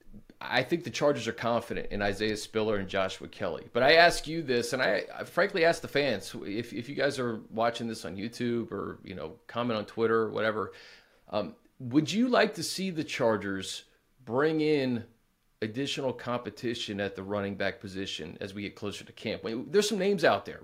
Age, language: 30-49, English